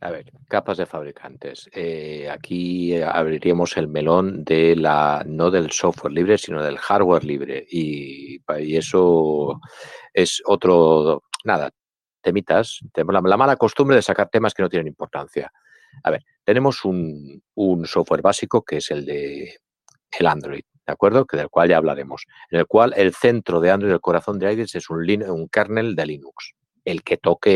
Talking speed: 170 wpm